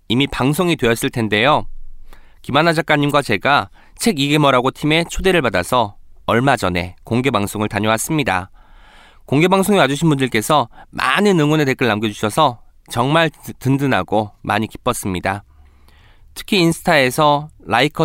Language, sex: Korean, male